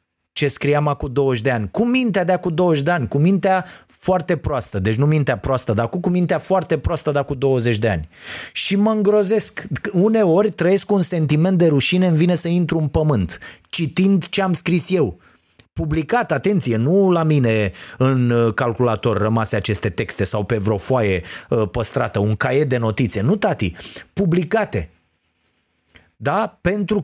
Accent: native